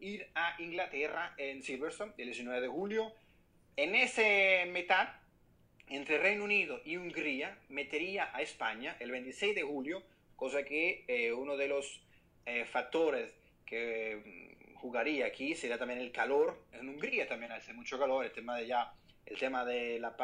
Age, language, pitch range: 30-49, Spanish, 135-200 Hz